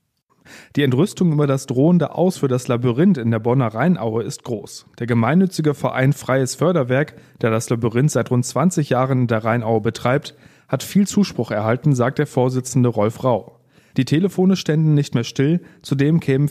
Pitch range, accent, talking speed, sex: 125-155 Hz, German, 175 wpm, male